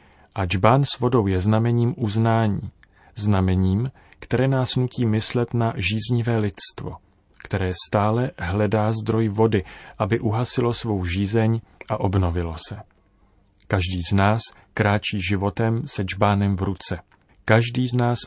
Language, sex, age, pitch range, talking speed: Czech, male, 40-59, 95-120 Hz, 130 wpm